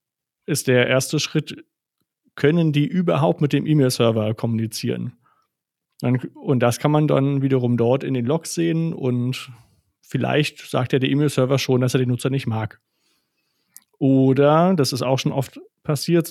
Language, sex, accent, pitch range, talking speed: German, male, German, 125-150 Hz, 155 wpm